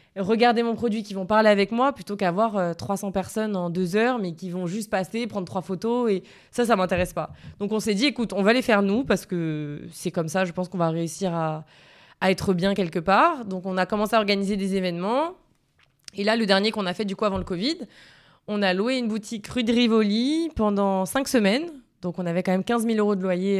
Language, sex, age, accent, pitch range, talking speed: French, female, 20-39, French, 180-220 Hz, 240 wpm